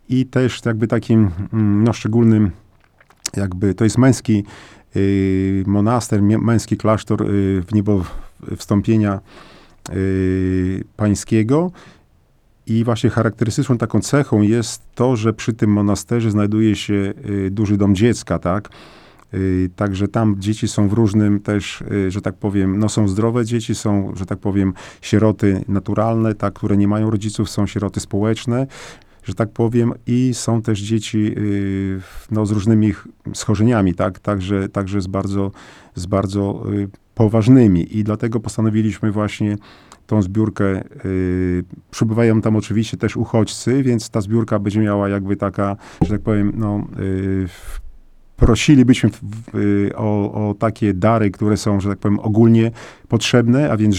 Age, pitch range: 40-59, 100-115 Hz